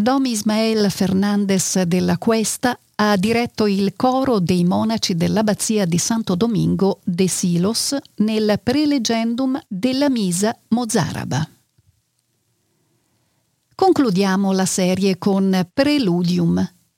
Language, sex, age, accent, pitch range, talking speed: Italian, female, 50-69, native, 180-240 Hz, 95 wpm